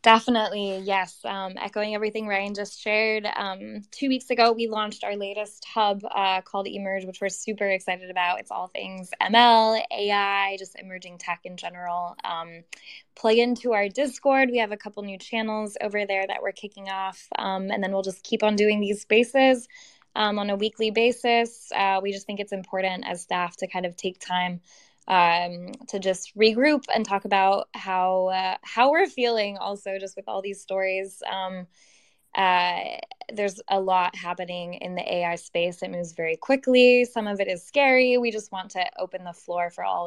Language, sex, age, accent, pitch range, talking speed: English, female, 10-29, American, 180-230 Hz, 190 wpm